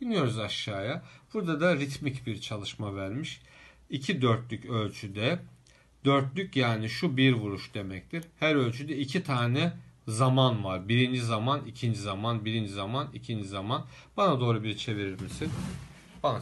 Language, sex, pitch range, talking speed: Turkish, male, 110-140 Hz, 135 wpm